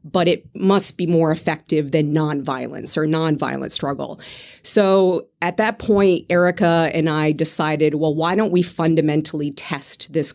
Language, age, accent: English, 30-49, American